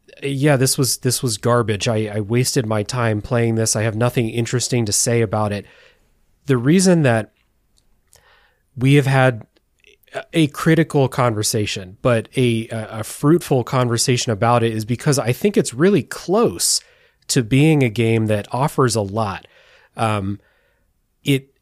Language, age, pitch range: English, 30-49, 115-135 Hz